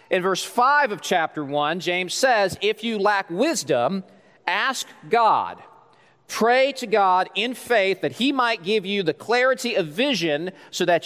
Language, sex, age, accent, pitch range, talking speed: English, male, 40-59, American, 180-245 Hz, 165 wpm